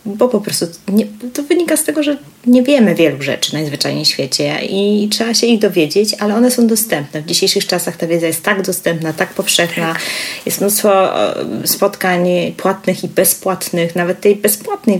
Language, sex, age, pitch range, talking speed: Polish, female, 30-49, 170-200 Hz, 180 wpm